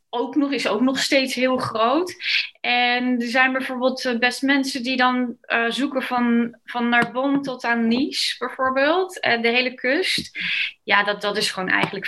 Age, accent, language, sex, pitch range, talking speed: 20-39, Dutch, Dutch, female, 230-265 Hz, 180 wpm